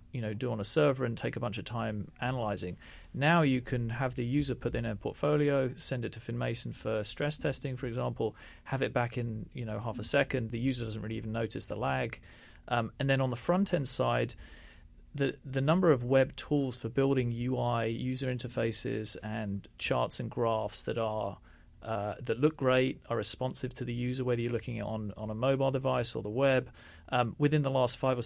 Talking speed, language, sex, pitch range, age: 210 wpm, English, male, 110-130 Hz, 40-59